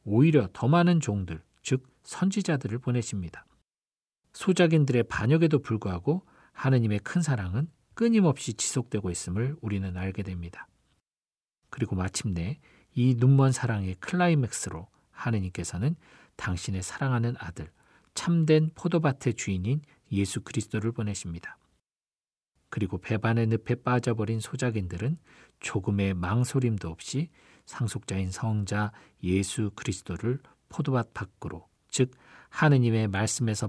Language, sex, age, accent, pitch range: Korean, male, 40-59, native, 100-130 Hz